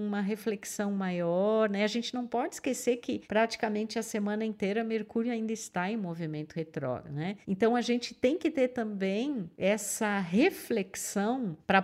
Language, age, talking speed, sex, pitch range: Portuguese, 50-69, 155 wpm, female, 180-250 Hz